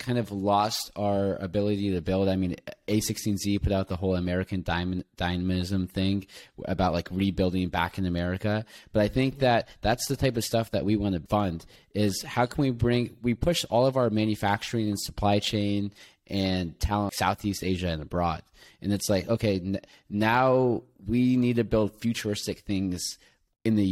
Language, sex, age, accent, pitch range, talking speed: English, male, 20-39, American, 95-110 Hz, 185 wpm